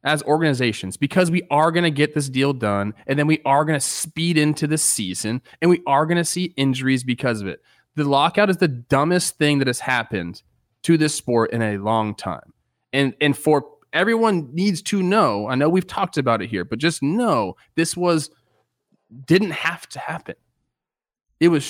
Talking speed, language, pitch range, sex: 200 wpm, English, 120-165 Hz, male